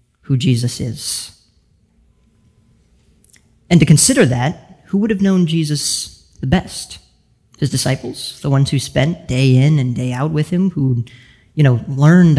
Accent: American